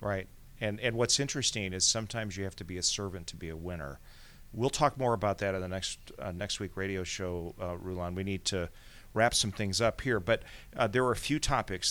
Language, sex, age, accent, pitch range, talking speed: English, male, 40-59, American, 95-110 Hz, 235 wpm